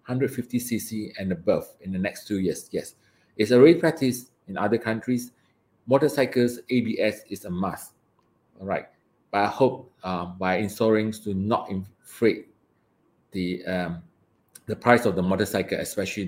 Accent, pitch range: Malaysian, 100-125 Hz